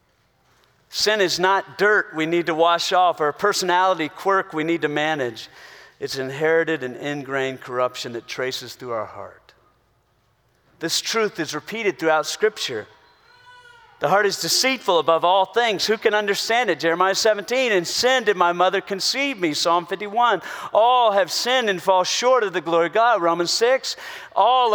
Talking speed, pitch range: 165 wpm, 175-255 Hz